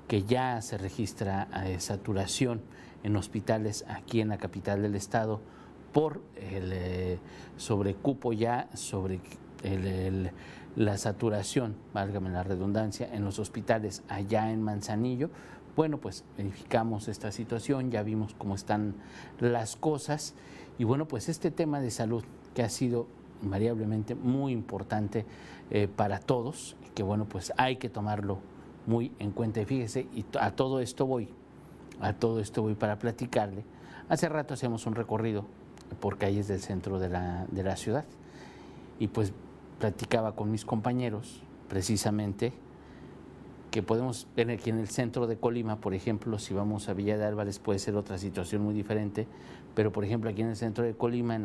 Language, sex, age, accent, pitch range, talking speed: Spanish, male, 50-69, Mexican, 100-120 Hz, 150 wpm